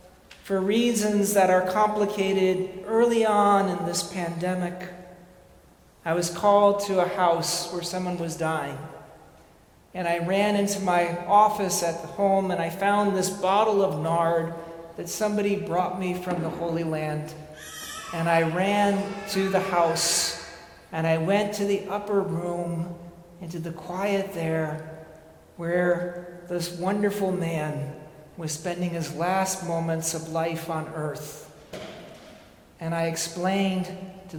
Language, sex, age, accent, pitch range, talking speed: English, male, 40-59, American, 160-190 Hz, 135 wpm